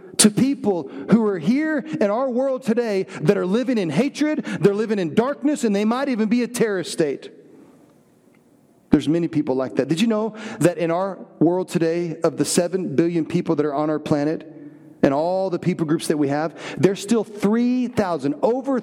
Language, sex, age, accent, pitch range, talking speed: English, male, 40-59, American, 175-255 Hz, 195 wpm